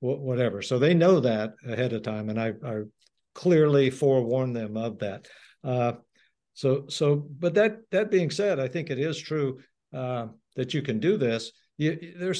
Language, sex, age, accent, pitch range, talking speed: English, male, 60-79, American, 110-145 Hz, 180 wpm